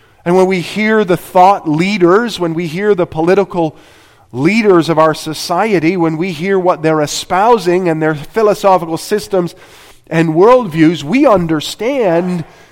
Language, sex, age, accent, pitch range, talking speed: English, male, 40-59, American, 150-205 Hz, 140 wpm